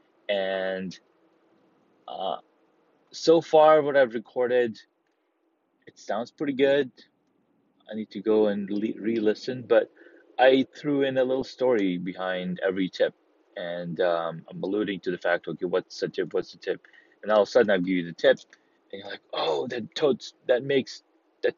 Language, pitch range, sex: English, 110-150 Hz, male